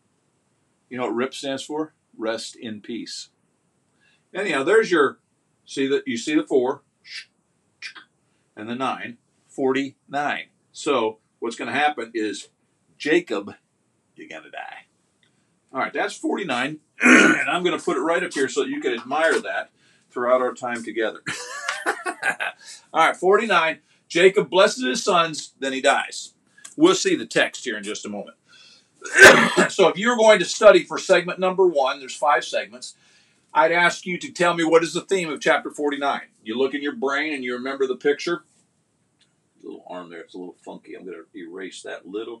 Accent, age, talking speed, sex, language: American, 50-69, 175 wpm, male, English